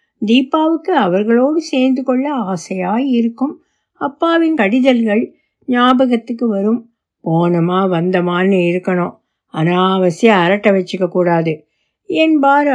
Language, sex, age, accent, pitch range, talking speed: Tamil, female, 60-79, native, 215-280 Hz, 75 wpm